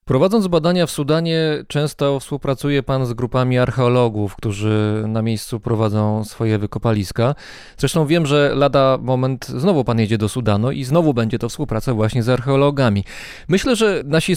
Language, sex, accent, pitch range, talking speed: Polish, male, native, 125-155 Hz, 155 wpm